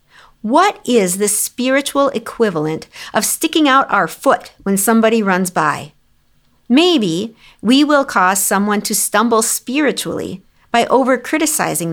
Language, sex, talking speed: English, female, 120 wpm